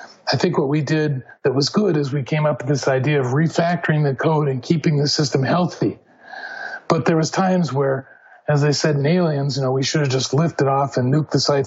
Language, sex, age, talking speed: English, male, 40-59, 235 wpm